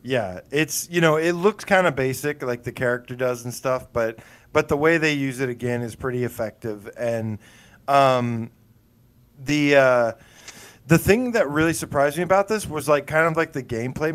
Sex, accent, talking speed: male, American, 190 wpm